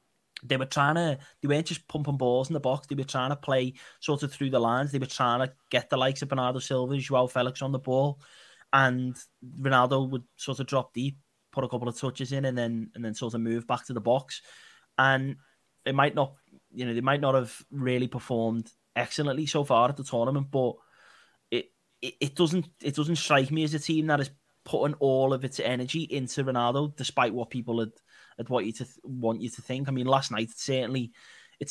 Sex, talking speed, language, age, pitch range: male, 225 wpm, English, 20-39, 120-140 Hz